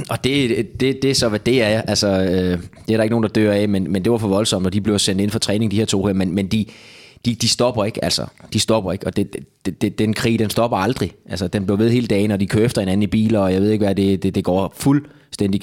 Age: 20-39